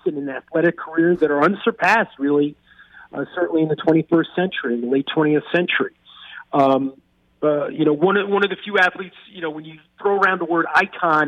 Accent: American